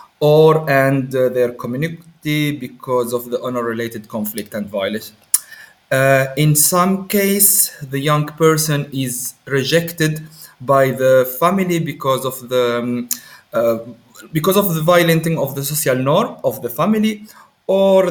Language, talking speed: Finnish, 140 wpm